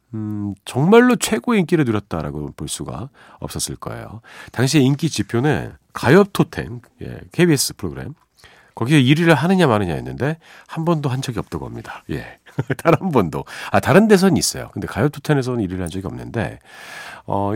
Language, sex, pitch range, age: Korean, male, 95-140 Hz, 40-59